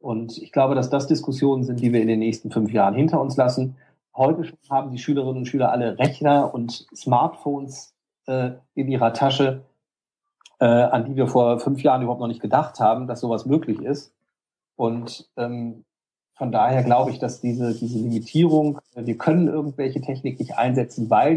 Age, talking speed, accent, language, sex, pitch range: 40-59, 185 wpm, German, German, male, 115-140 Hz